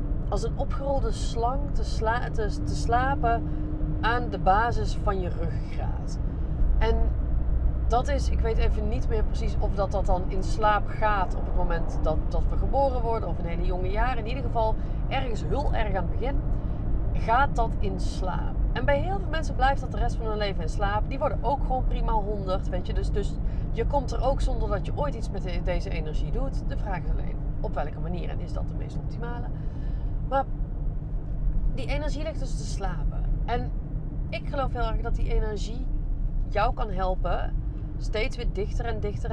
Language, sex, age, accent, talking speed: Dutch, female, 30-49, Dutch, 200 wpm